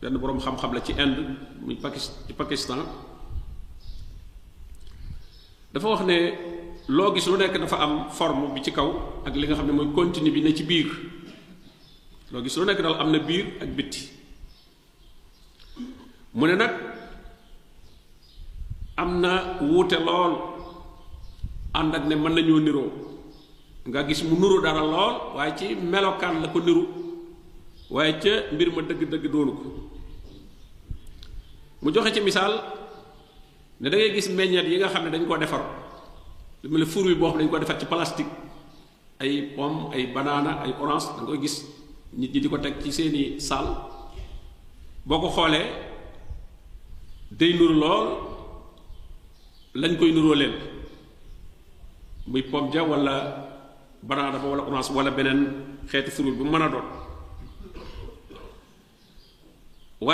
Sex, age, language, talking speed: male, 50-69, French, 60 wpm